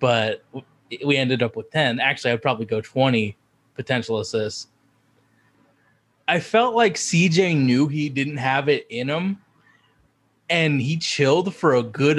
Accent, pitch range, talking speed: American, 115-145 Hz, 150 wpm